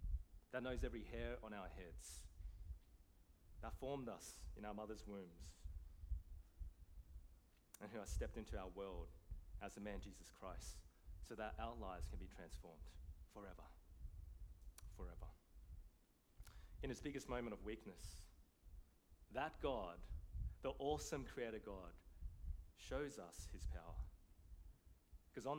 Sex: male